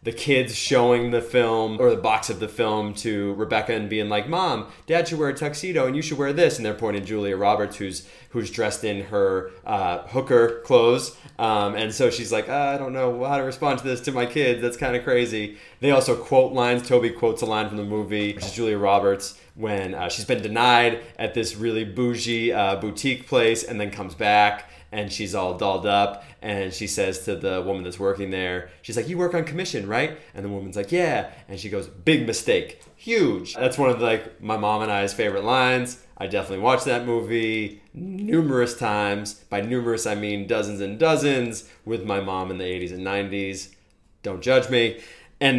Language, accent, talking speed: English, American, 210 wpm